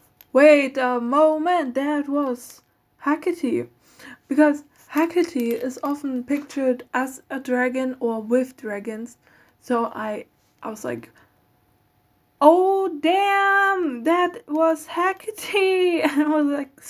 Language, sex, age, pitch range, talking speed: English, female, 10-29, 230-295 Hz, 110 wpm